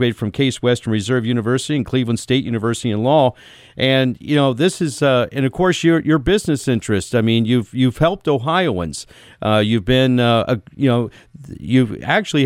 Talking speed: 190 wpm